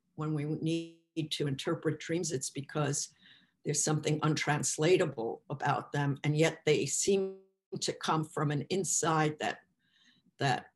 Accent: American